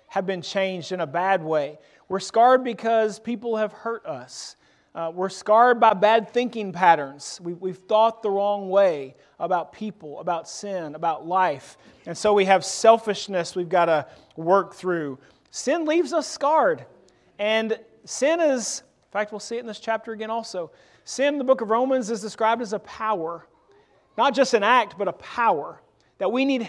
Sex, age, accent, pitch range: male, 30-49, American, 175-230 Hz